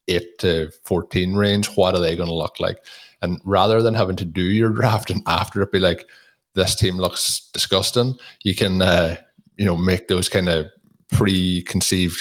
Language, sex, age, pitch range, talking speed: English, male, 20-39, 85-95 Hz, 185 wpm